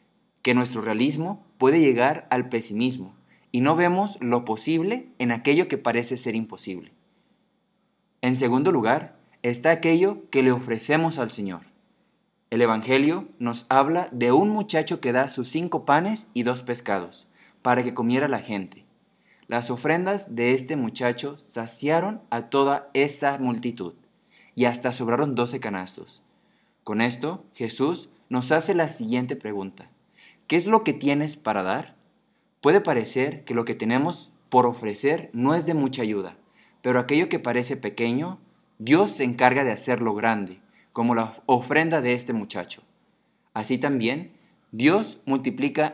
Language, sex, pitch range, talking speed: Spanish, male, 120-155 Hz, 145 wpm